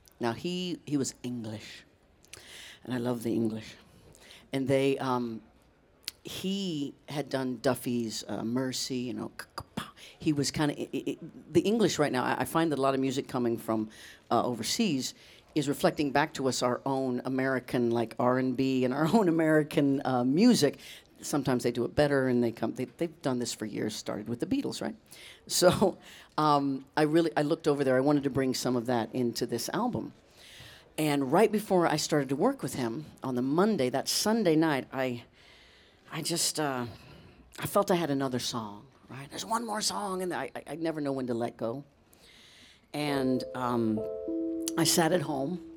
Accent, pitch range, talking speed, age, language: American, 120-155 Hz, 185 wpm, 50-69, English